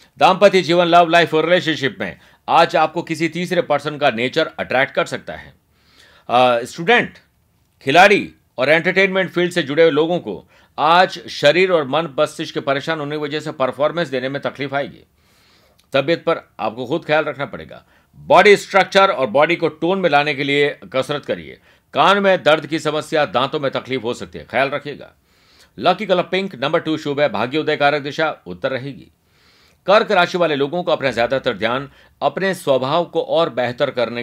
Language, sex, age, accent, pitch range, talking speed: Hindi, male, 50-69, native, 135-170 Hz, 175 wpm